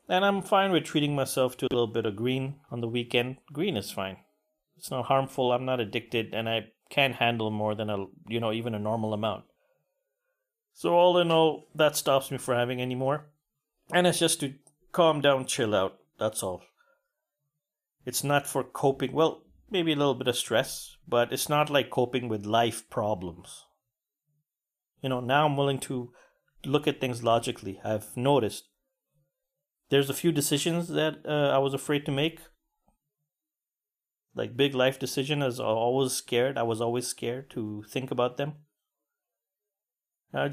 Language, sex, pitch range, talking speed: English, male, 120-160 Hz, 175 wpm